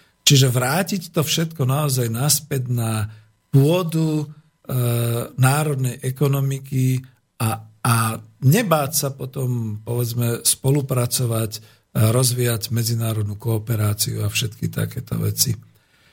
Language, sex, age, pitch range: Slovak, male, 50-69, 115-145 Hz